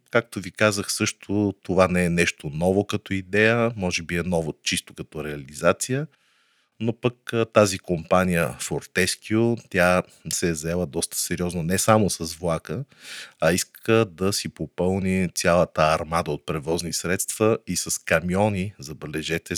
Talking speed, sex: 145 wpm, male